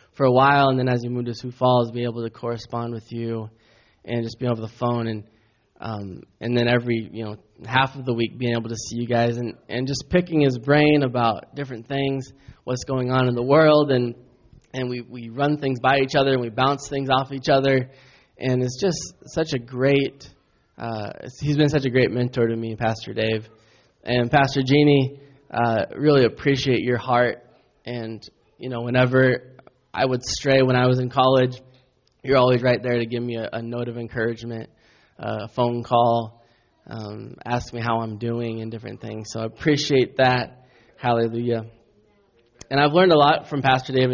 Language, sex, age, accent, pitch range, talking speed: English, male, 10-29, American, 115-135 Hz, 195 wpm